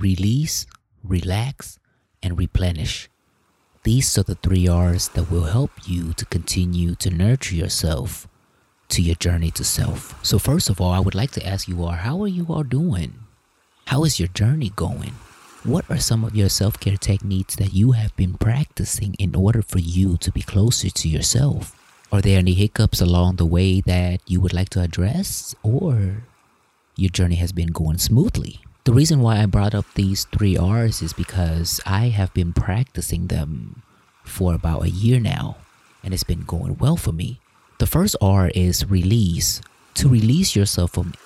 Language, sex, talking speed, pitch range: English, male, 175 wpm, 90-115 Hz